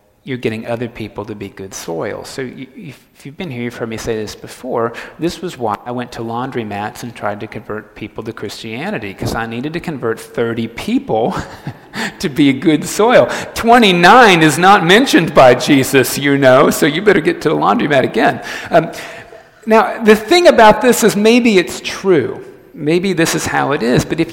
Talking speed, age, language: 195 wpm, 40-59, English